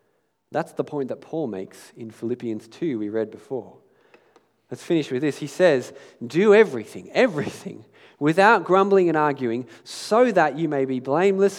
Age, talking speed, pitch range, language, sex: 40-59, 160 wpm, 115-160 Hz, English, male